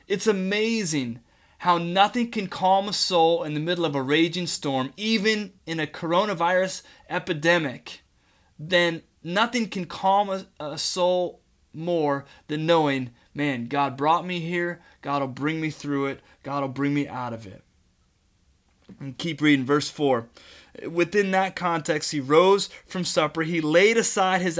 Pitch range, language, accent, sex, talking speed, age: 145-190 Hz, English, American, male, 155 wpm, 30-49